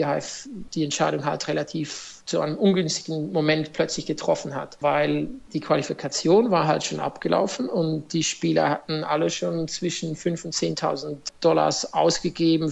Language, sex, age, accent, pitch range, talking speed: German, male, 50-69, German, 150-170 Hz, 140 wpm